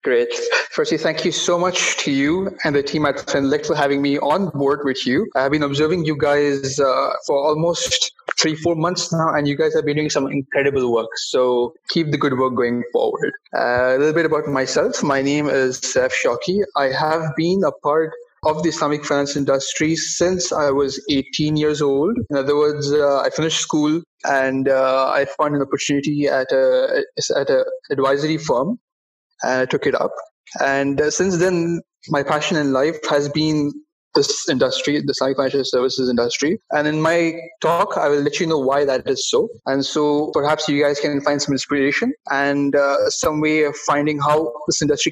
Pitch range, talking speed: 140-170 Hz, 195 wpm